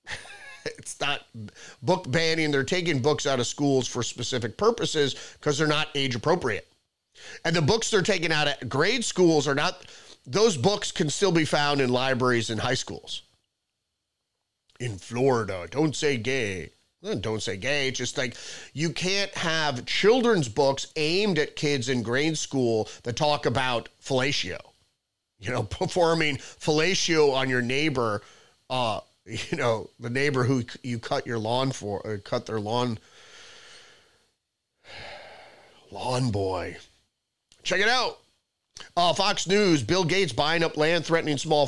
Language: English